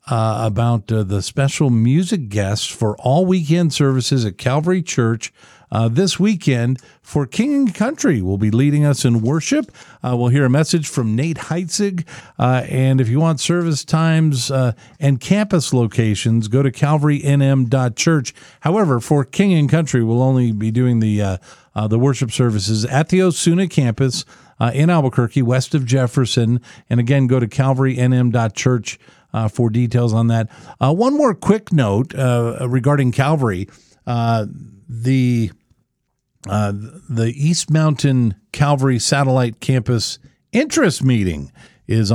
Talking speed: 150 wpm